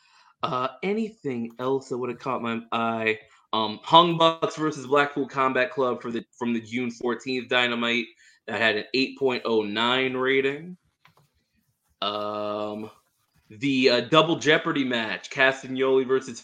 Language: English